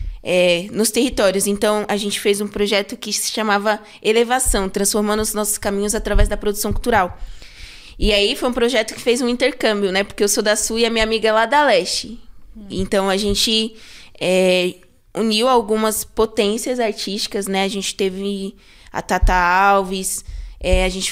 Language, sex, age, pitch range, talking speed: Portuguese, female, 20-39, 195-220 Hz, 170 wpm